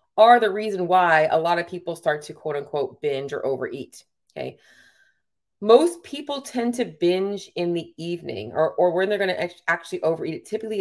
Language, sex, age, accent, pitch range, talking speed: English, female, 30-49, American, 150-220 Hz, 190 wpm